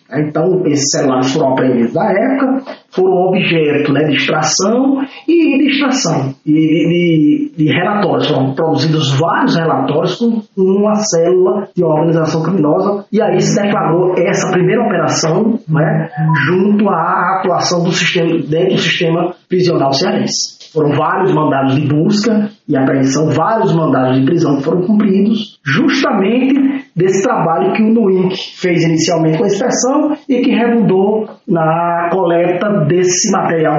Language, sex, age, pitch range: Portuguese, male, 20-39, 150-195 Hz